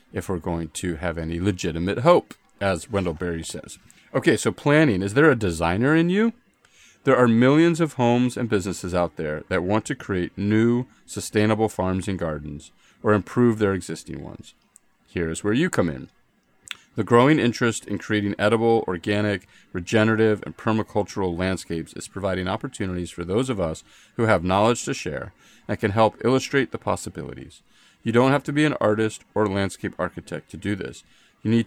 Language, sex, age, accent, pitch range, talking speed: English, male, 40-59, American, 90-115 Hz, 180 wpm